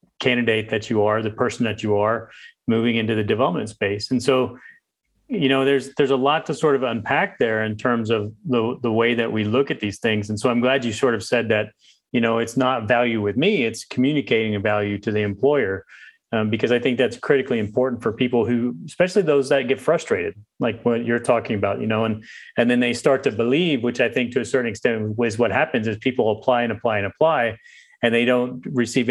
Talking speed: 230 wpm